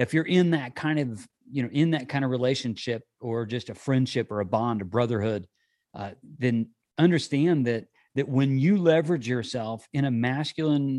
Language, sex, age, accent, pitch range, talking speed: English, male, 40-59, American, 115-140 Hz, 185 wpm